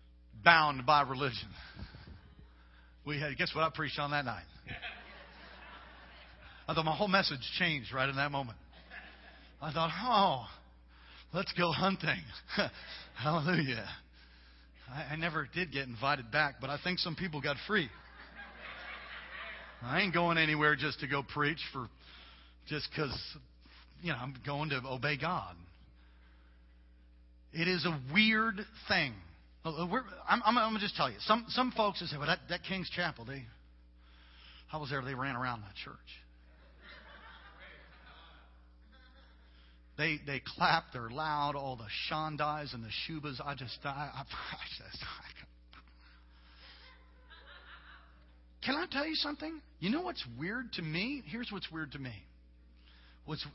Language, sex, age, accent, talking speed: English, male, 40-59, American, 145 wpm